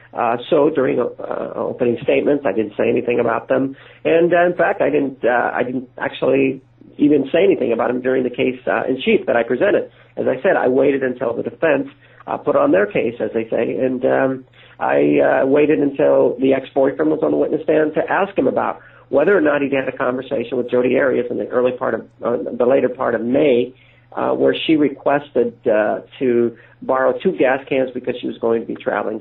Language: English